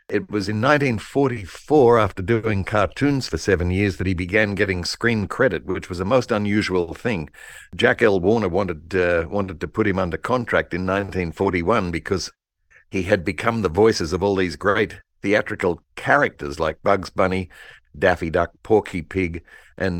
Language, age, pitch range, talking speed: English, 60-79, 90-110 Hz, 165 wpm